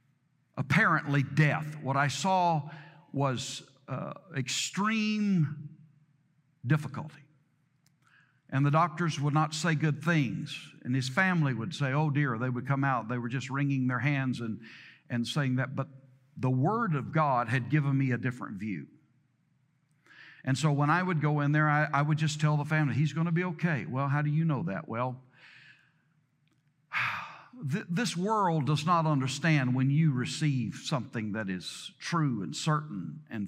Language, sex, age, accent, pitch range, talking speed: English, male, 60-79, American, 135-165 Hz, 165 wpm